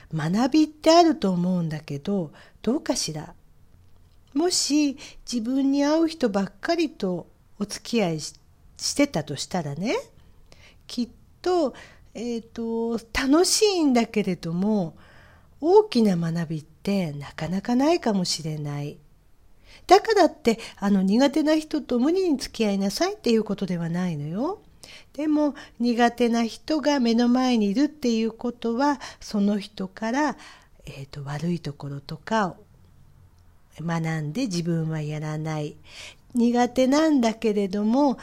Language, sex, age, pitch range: Japanese, female, 50-69, 165-270 Hz